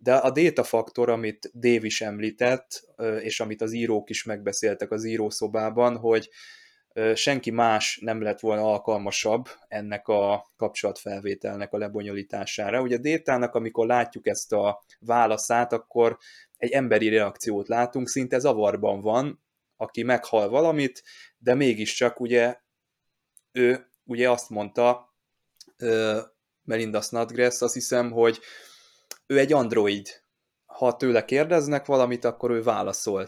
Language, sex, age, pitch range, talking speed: Hungarian, male, 20-39, 105-125 Hz, 115 wpm